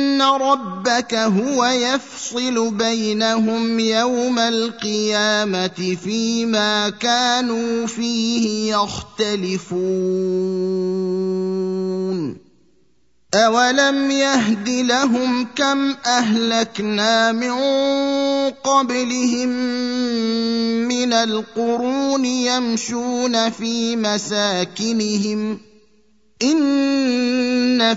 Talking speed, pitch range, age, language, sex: 50 wpm, 210-250 Hz, 30-49, Arabic, male